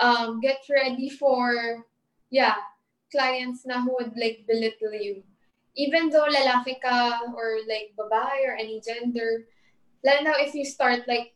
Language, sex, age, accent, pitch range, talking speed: English, female, 20-39, Filipino, 230-285 Hz, 135 wpm